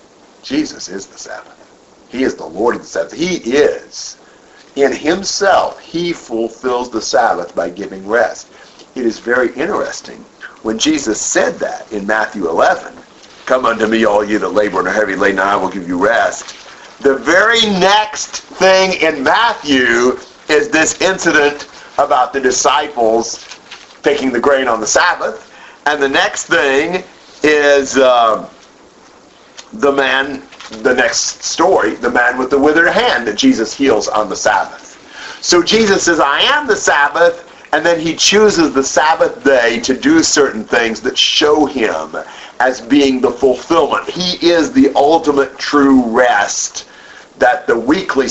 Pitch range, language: 125-180 Hz, English